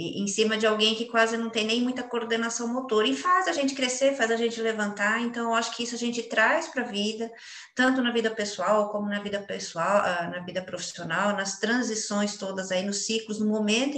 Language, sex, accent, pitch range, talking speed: Portuguese, female, Brazilian, 205-245 Hz, 220 wpm